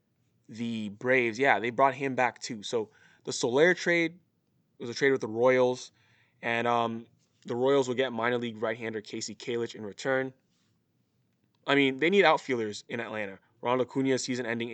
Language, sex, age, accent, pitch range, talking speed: English, male, 20-39, American, 115-135 Hz, 165 wpm